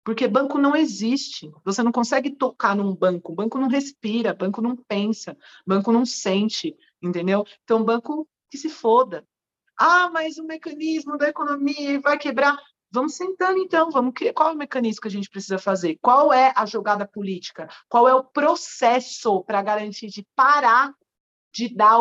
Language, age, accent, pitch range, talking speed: Portuguese, 40-59, Brazilian, 210-295 Hz, 170 wpm